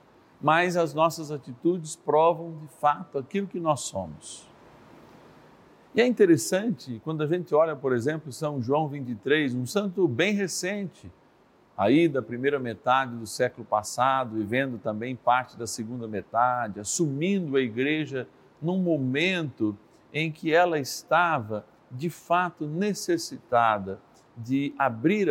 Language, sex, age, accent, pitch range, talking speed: Portuguese, male, 50-69, Brazilian, 120-165 Hz, 130 wpm